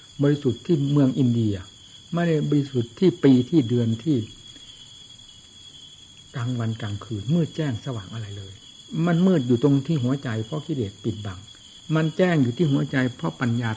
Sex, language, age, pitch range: male, Thai, 60-79, 110-145 Hz